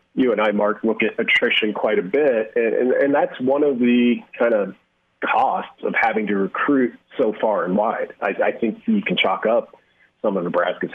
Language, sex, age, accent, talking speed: English, male, 30-49, American, 210 wpm